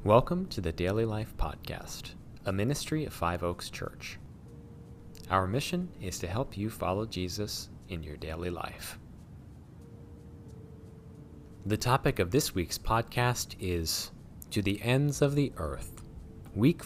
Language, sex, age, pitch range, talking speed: English, male, 30-49, 85-115 Hz, 135 wpm